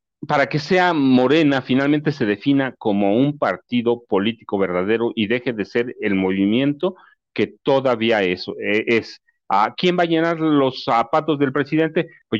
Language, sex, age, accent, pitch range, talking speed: Spanish, male, 40-59, Mexican, 110-140 Hz, 150 wpm